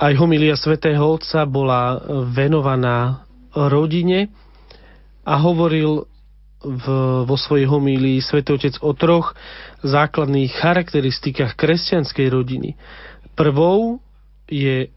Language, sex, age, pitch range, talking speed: Slovak, male, 40-59, 130-160 Hz, 90 wpm